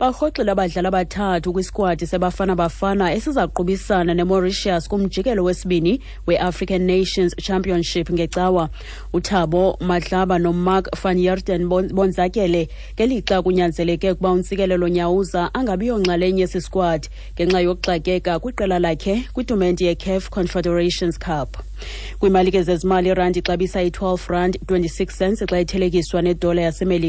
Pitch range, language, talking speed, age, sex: 170-190 Hz, English, 125 wpm, 30-49, female